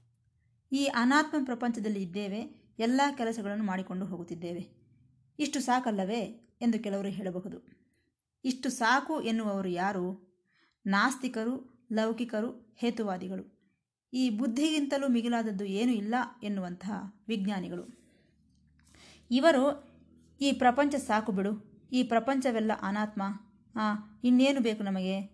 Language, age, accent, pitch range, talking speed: Kannada, 20-39, native, 195-245 Hz, 90 wpm